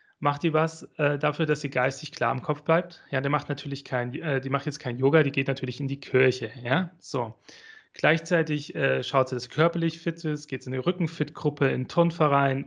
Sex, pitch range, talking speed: male, 130-170 Hz, 225 wpm